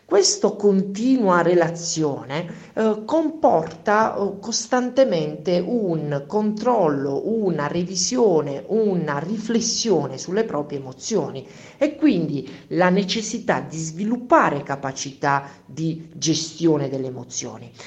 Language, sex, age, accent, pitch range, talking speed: Italian, male, 50-69, native, 145-215 Hz, 85 wpm